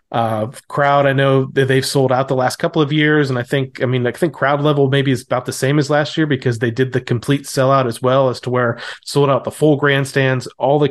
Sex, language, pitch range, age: male, English, 115-135 Hz, 30-49